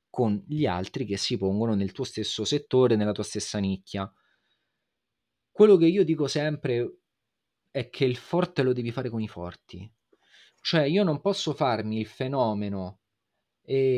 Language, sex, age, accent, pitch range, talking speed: Italian, male, 30-49, native, 110-150 Hz, 160 wpm